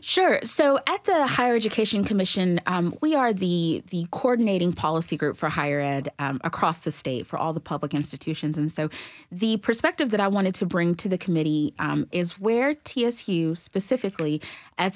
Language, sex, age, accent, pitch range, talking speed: English, female, 30-49, American, 150-185 Hz, 180 wpm